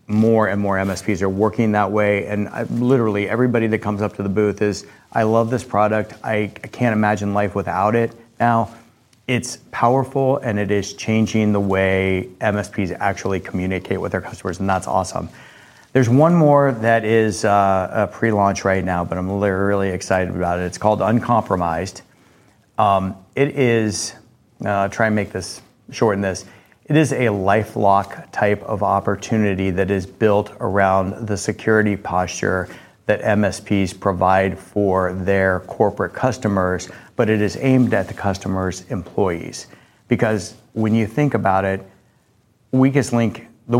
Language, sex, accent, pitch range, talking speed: English, male, American, 95-115 Hz, 155 wpm